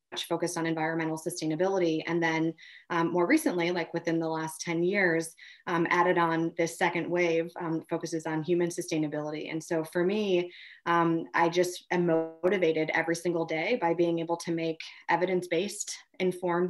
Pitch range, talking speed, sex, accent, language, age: 165-180 Hz, 160 wpm, female, American, English, 20-39